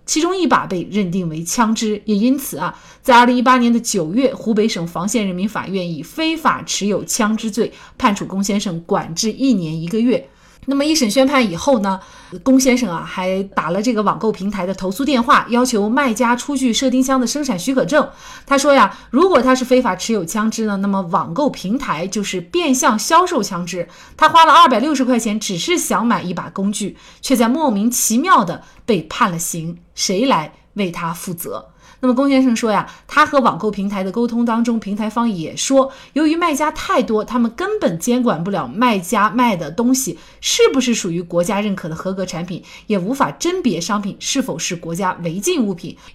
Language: Chinese